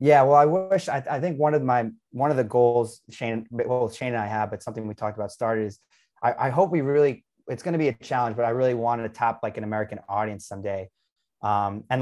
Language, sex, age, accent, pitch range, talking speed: English, male, 20-39, American, 110-130 Hz, 255 wpm